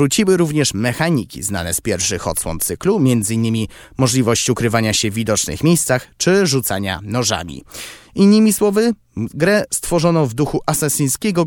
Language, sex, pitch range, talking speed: Polish, male, 110-170 Hz, 130 wpm